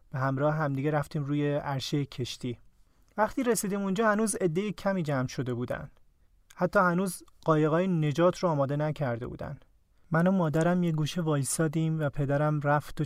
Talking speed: 155 wpm